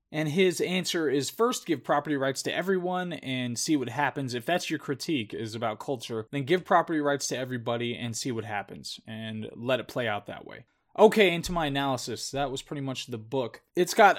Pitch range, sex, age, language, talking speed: 120-150 Hz, male, 20-39, English, 210 wpm